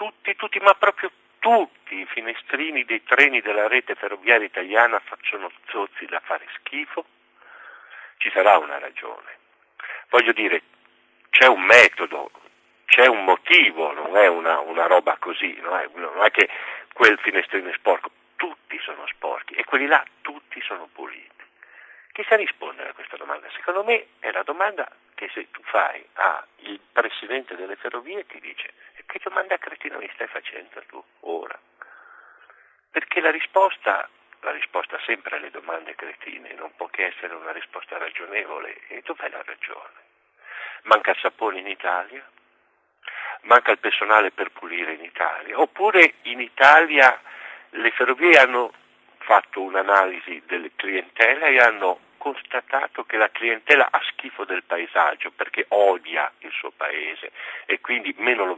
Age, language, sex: 50-69, Italian, male